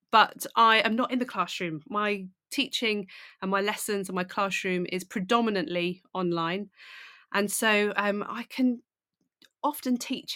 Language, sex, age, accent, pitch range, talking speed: English, female, 30-49, British, 175-215 Hz, 145 wpm